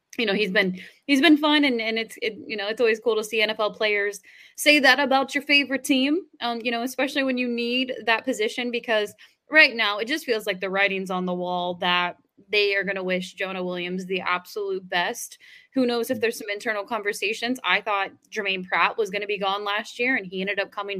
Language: English